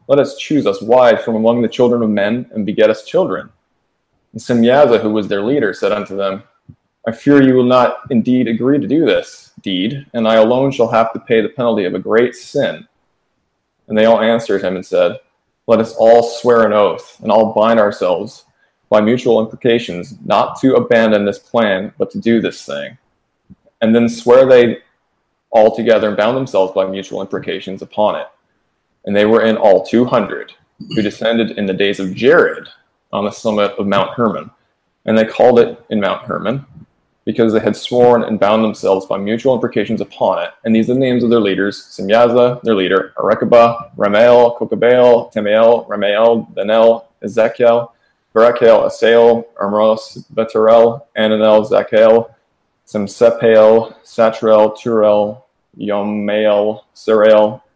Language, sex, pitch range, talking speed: English, male, 105-120 Hz, 165 wpm